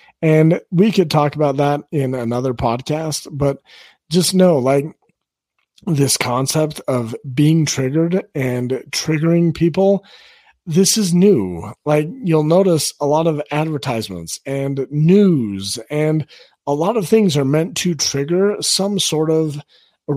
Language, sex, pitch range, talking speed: English, male, 135-180 Hz, 135 wpm